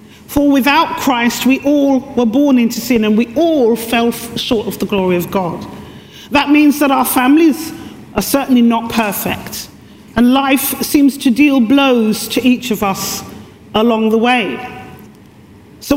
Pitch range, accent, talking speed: 230-285 Hz, British, 160 wpm